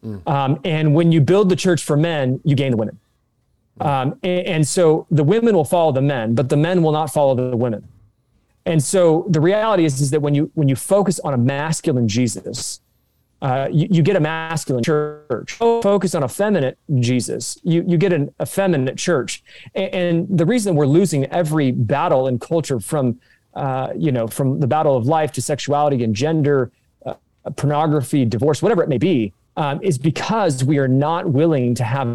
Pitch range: 130-170 Hz